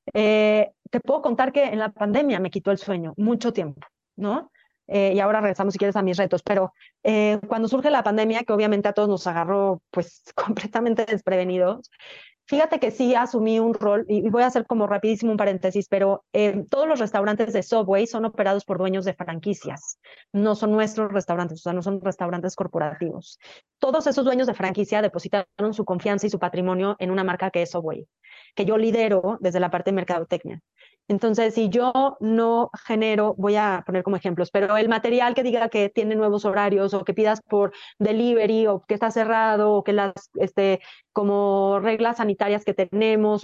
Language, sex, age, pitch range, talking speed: Spanish, female, 30-49, 195-225 Hz, 190 wpm